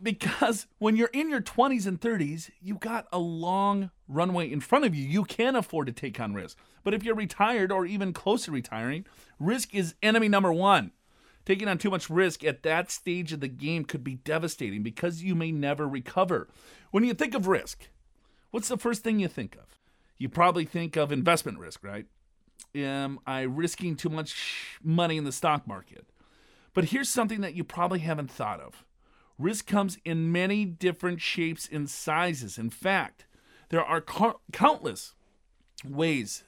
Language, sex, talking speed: English, male, 180 wpm